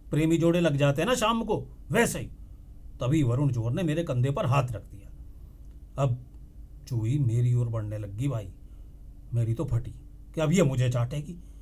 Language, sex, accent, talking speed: Hindi, male, native, 175 wpm